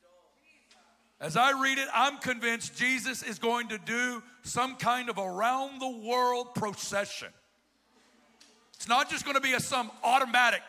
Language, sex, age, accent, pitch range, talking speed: English, male, 50-69, American, 200-250 Hz, 135 wpm